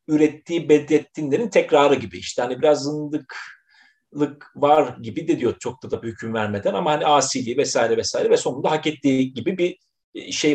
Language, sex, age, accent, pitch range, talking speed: Turkish, male, 40-59, native, 125-175 Hz, 170 wpm